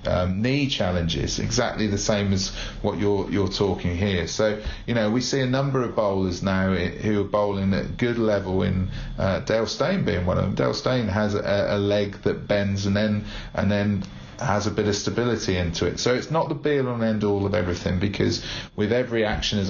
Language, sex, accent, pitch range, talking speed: English, male, British, 90-105 Hz, 215 wpm